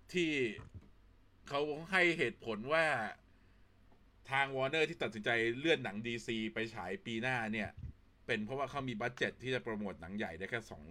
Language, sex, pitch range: Thai, male, 95-130 Hz